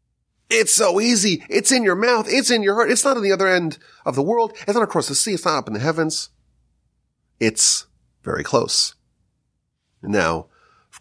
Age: 30-49